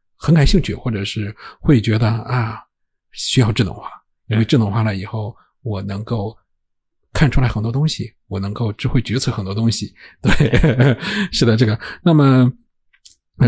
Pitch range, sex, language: 110-130 Hz, male, Chinese